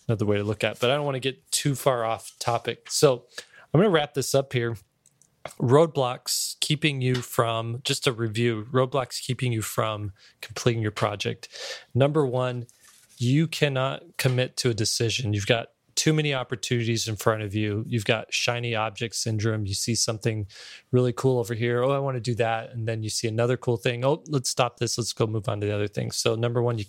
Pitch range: 110-130 Hz